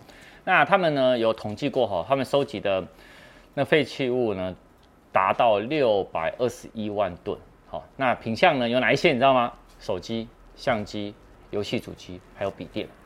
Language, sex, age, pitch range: Chinese, male, 30-49, 100-135 Hz